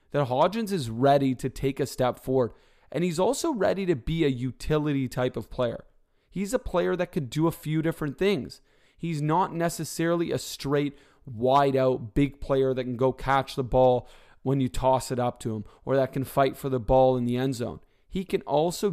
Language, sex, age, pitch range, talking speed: English, male, 30-49, 130-170 Hz, 205 wpm